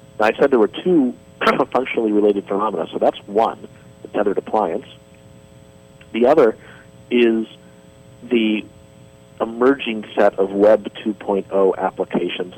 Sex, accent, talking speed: male, American, 110 wpm